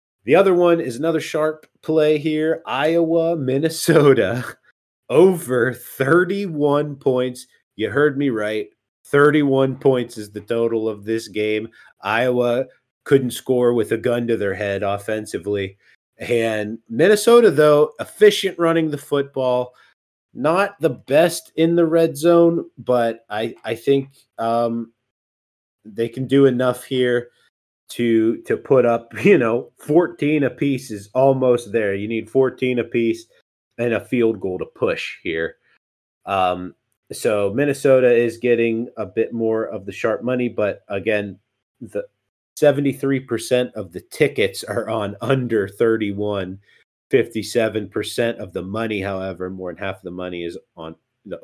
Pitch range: 105-140 Hz